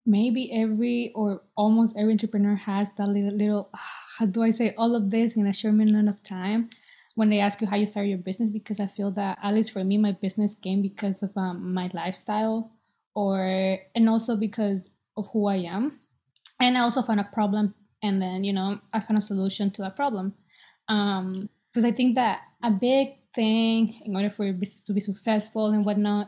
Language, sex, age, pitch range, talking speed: English, female, 20-39, 200-225 Hz, 210 wpm